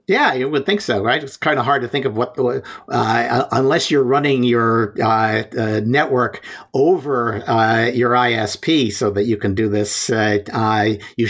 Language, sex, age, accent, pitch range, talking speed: English, male, 50-69, American, 100-125 Hz, 185 wpm